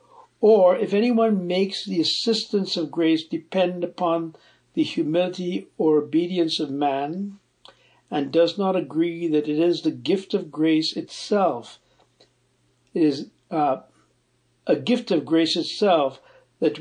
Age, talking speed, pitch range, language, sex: 60-79, 130 wpm, 145-175 Hz, English, male